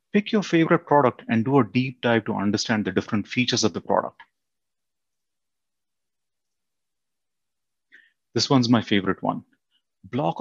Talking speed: 135 wpm